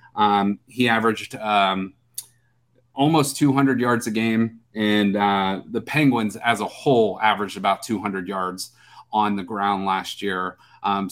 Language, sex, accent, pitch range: English, male, American, 110-140 Hz